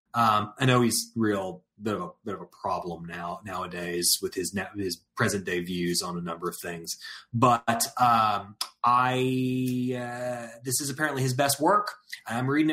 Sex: male